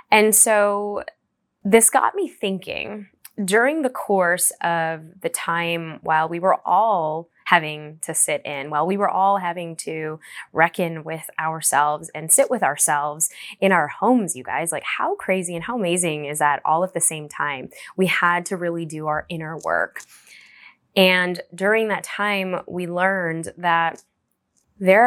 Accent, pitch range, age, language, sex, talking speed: American, 165-210 Hz, 10-29, English, female, 160 wpm